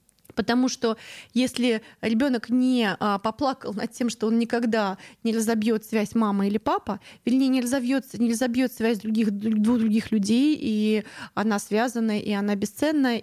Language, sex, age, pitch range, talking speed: Russian, female, 20-39, 210-250 Hz, 150 wpm